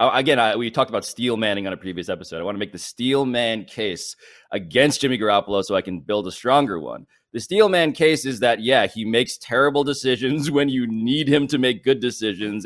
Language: English